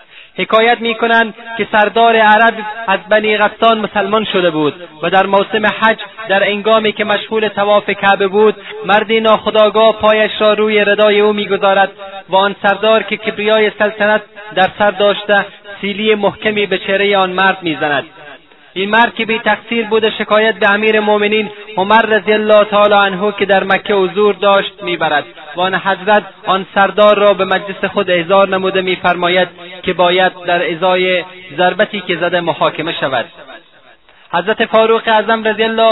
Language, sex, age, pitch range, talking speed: Persian, male, 30-49, 195-215 Hz, 150 wpm